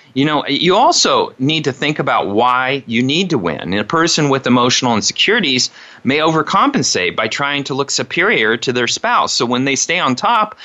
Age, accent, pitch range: 30-49, American, 120-150 Hz